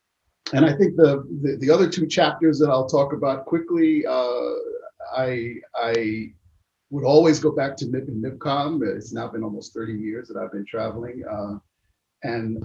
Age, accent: 50-69, American